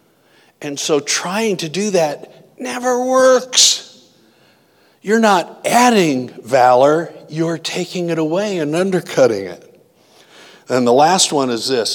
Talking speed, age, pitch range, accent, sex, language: 125 wpm, 60-79, 120-175 Hz, American, male, English